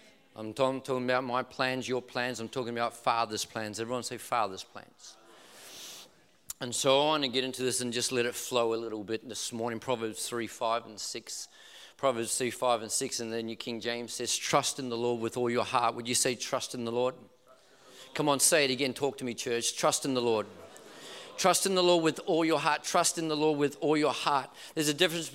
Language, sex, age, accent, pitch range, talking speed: English, male, 40-59, Australian, 125-165 Hz, 230 wpm